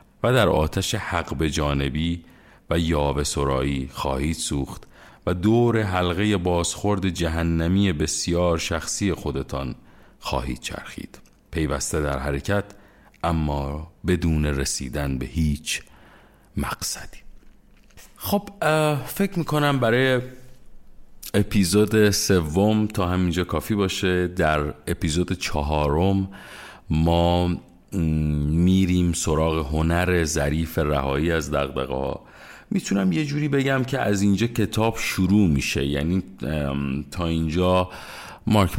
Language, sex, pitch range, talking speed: Persian, male, 75-105 Hz, 100 wpm